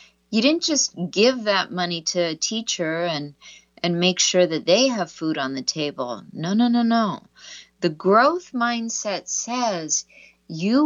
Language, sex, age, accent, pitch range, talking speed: English, female, 50-69, American, 155-230 Hz, 160 wpm